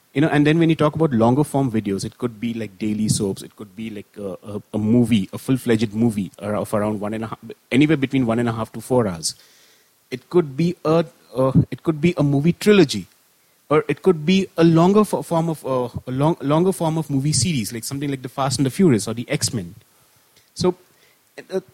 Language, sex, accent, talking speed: English, male, Indian, 235 wpm